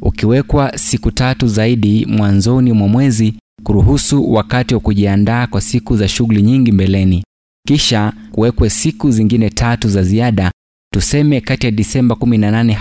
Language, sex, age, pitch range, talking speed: Swahili, male, 30-49, 105-125 Hz, 135 wpm